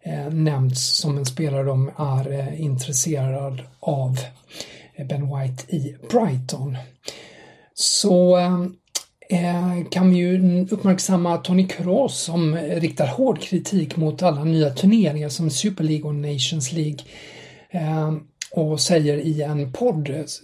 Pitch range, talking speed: 145-175 Hz, 110 wpm